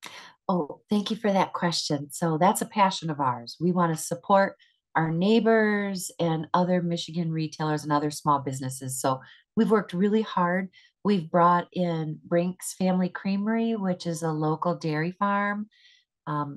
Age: 40-59